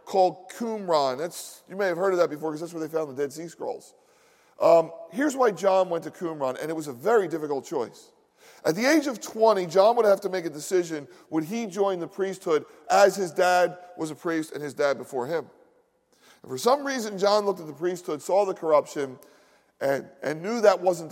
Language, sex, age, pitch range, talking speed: English, male, 40-59, 155-205 Hz, 220 wpm